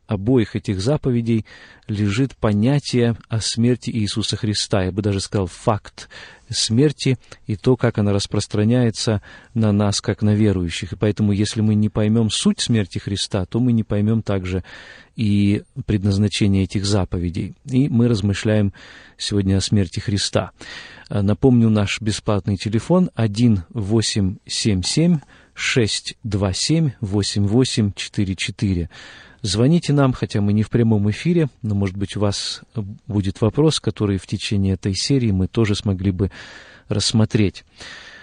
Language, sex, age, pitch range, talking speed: Russian, male, 40-59, 105-130 Hz, 130 wpm